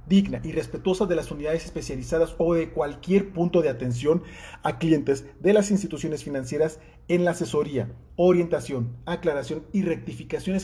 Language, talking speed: Spanish, 145 wpm